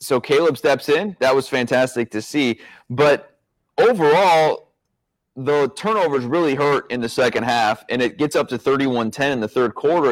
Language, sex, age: English, male, 30-49